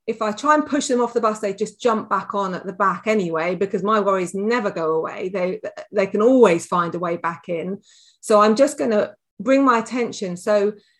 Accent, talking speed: British, 230 wpm